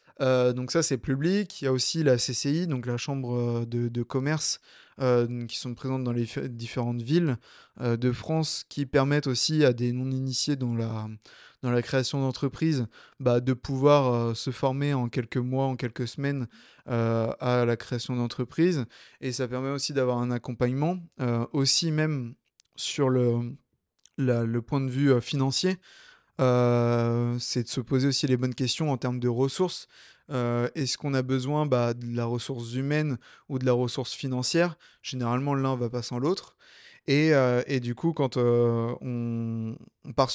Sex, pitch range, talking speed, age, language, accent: male, 120-140 Hz, 175 wpm, 20-39, French, French